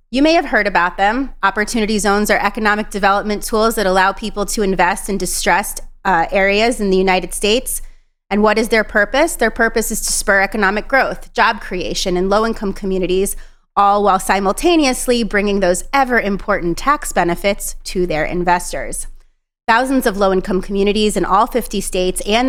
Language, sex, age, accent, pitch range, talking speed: English, female, 30-49, American, 190-225 Hz, 165 wpm